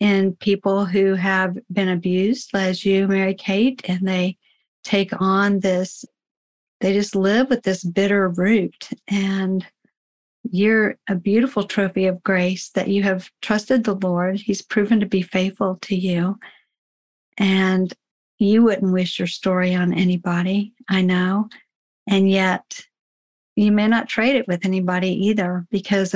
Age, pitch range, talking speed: 50-69, 185-205 Hz, 140 wpm